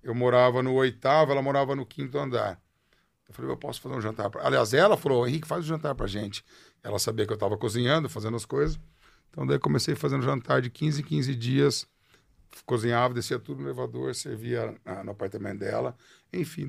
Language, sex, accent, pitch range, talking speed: Portuguese, male, Brazilian, 115-155 Hz, 200 wpm